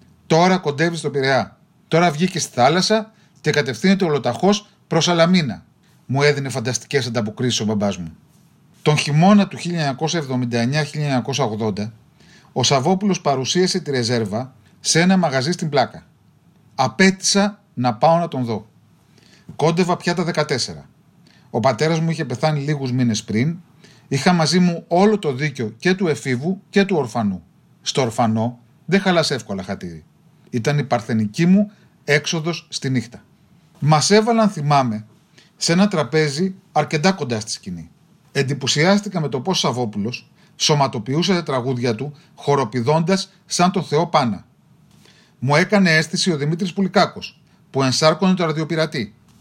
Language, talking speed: Greek, 130 wpm